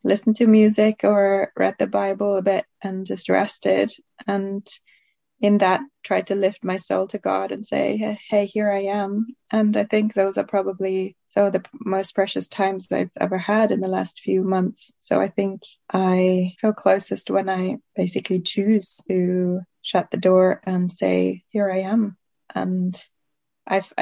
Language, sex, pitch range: English, female, 185-205 Hz